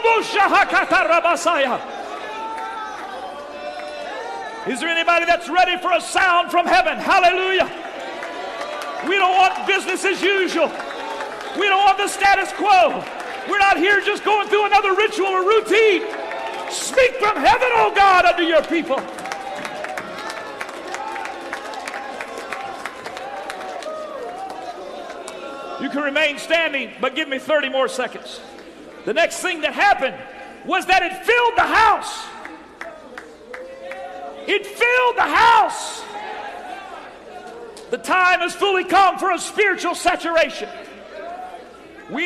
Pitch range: 335-400 Hz